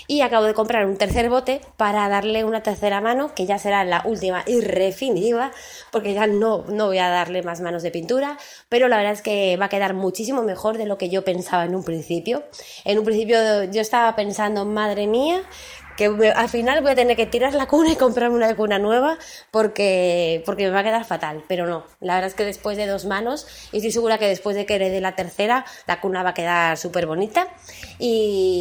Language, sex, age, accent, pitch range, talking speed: Spanish, female, 20-39, Spanish, 180-225 Hz, 225 wpm